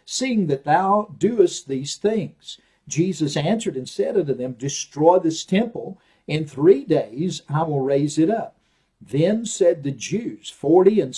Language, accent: English, American